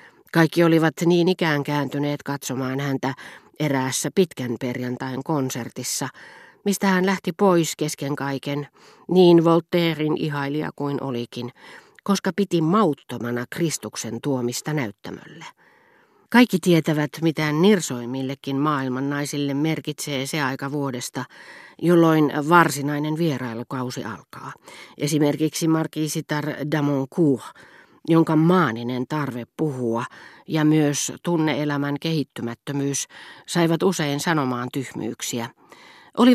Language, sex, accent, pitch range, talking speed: Finnish, female, native, 140-175 Hz, 95 wpm